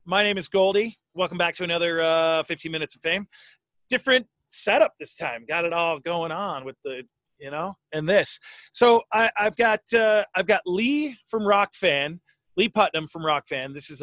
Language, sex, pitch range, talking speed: English, male, 165-205 Hz, 195 wpm